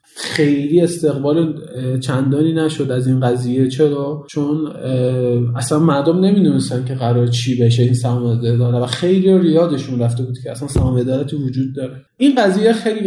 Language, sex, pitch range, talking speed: Persian, male, 135-170 Hz, 145 wpm